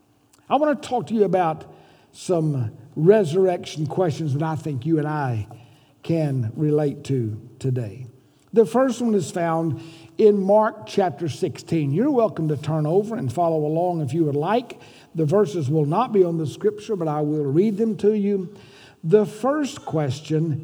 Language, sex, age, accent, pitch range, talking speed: English, male, 60-79, American, 145-215 Hz, 170 wpm